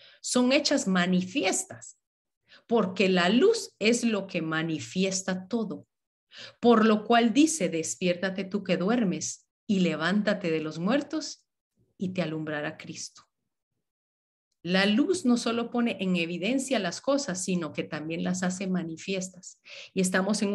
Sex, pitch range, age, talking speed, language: female, 175-215 Hz, 40-59, 135 wpm, Spanish